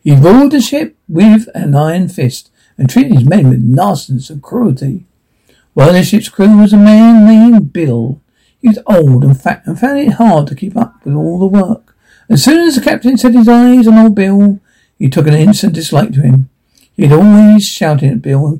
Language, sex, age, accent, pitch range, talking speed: English, male, 60-79, British, 145-220 Hz, 215 wpm